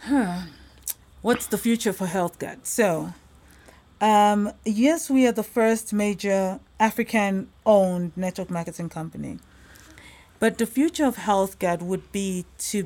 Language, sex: English, female